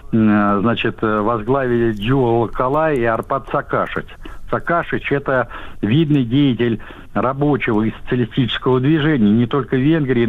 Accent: native